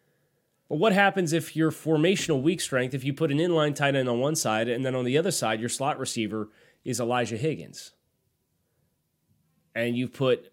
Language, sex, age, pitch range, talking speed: English, male, 30-49, 110-140 Hz, 180 wpm